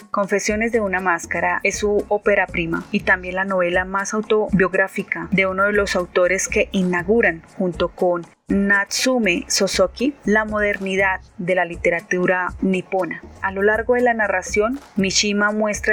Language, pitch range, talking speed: Spanish, 180-205 Hz, 145 wpm